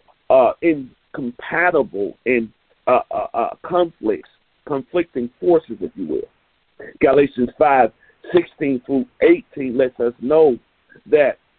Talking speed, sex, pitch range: 105 wpm, male, 130-185 Hz